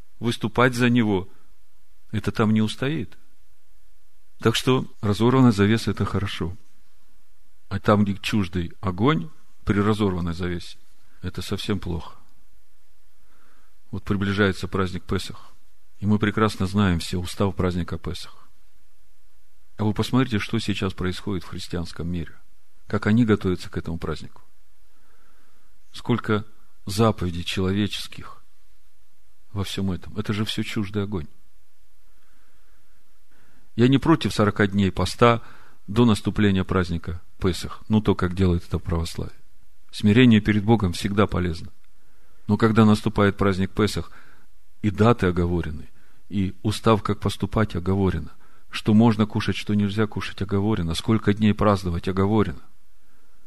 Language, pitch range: Russian, 90-105 Hz